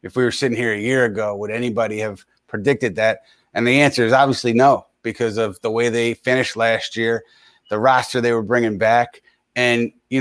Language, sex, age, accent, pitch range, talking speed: English, male, 30-49, American, 110-125 Hz, 205 wpm